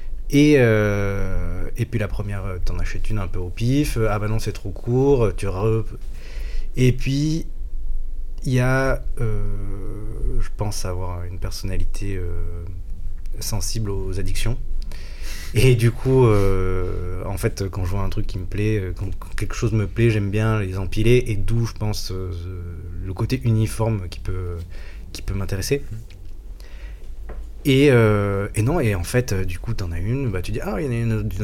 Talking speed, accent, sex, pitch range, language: 185 wpm, French, male, 95-120 Hz, French